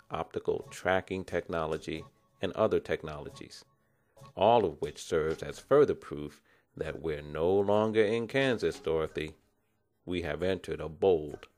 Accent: American